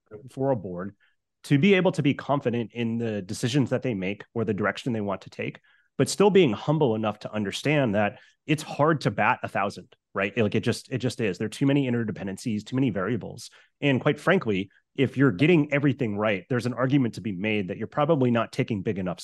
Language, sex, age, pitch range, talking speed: English, male, 30-49, 110-140 Hz, 225 wpm